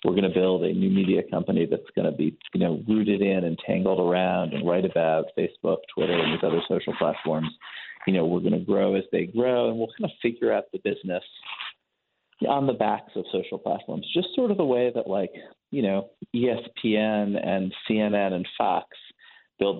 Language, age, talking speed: English, 30-49, 205 wpm